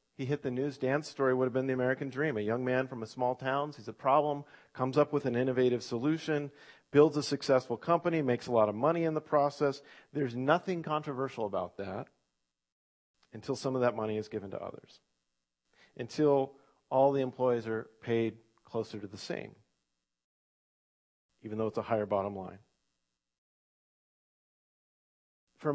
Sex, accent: male, American